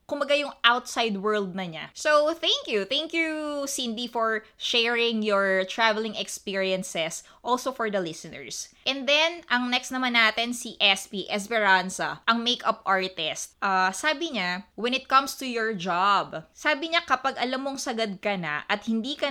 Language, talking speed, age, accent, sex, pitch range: Filipino, 165 wpm, 20-39, native, female, 195-255 Hz